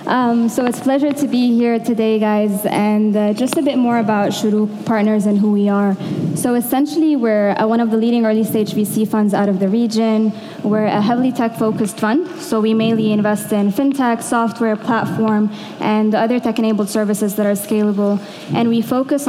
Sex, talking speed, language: female, 185 wpm, English